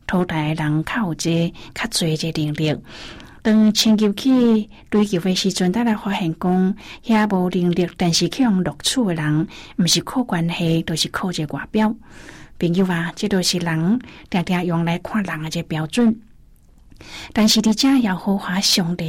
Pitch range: 165-205 Hz